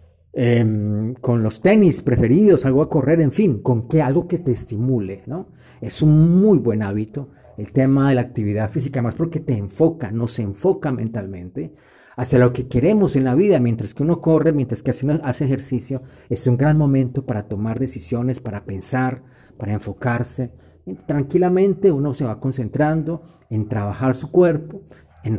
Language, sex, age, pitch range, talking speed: Spanish, male, 40-59, 115-155 Hz, 175 wpm